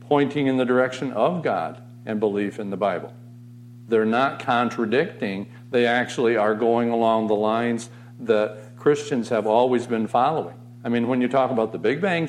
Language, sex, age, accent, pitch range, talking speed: English, male, 50-69, American, 115-135 Hz, 175 wpm